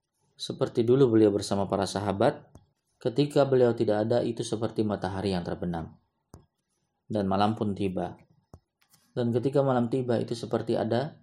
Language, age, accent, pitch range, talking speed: Indonesian, 30-49, native, 105-135 Hz, 140 wpm